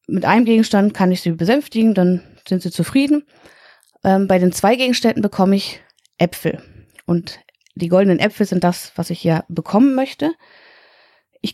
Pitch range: 175-225 Hz